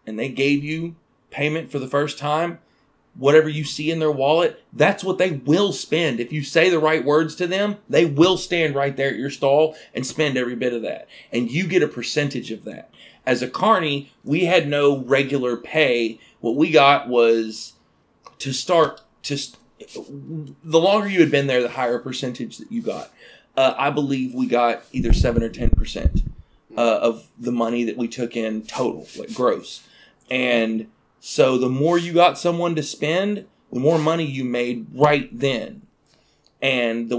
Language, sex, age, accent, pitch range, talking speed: English, male, 30-49, American, 125-155 Hz, 185 wpm